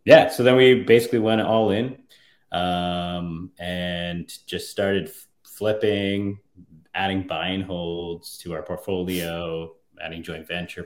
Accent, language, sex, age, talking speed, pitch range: American, English, male, 30-49, 120 wpm, 85-110 Hz